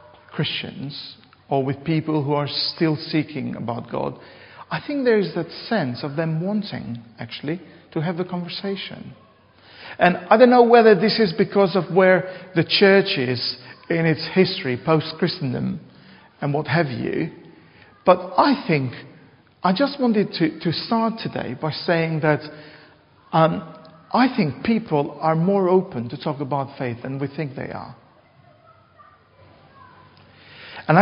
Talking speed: 145 wpm